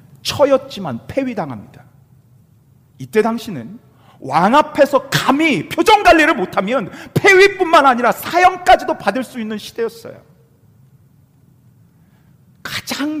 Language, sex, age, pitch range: Korean, male, 40-59, 130-210 Hz